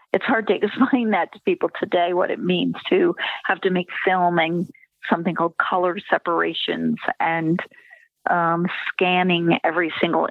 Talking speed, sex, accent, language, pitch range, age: 150 wpm, female, American, English, 160-190 Hz, 40-59